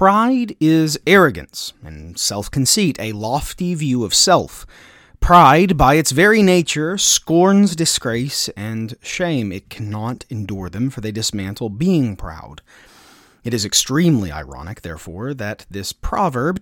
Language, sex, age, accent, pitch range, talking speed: English, male, 30-49, American, 110-175 Hz, 130 wpm